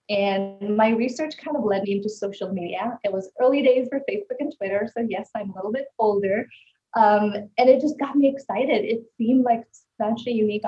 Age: 20-39